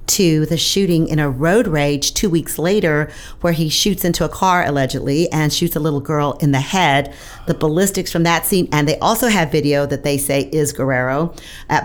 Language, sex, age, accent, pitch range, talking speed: English, female, 40-59, American, 145-170 Hz, 210 wpm